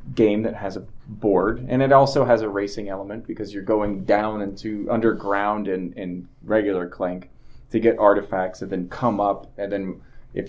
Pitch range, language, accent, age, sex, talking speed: 95-115 Hz, English, American, 20-39, male, 190 wpm